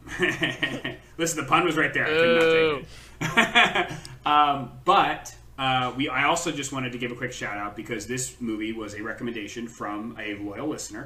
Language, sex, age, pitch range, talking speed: English, male, 30-49, 110-135 Hz, 190 wpm